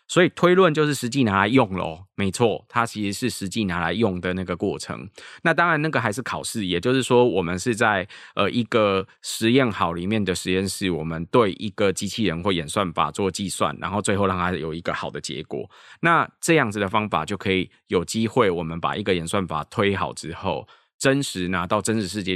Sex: male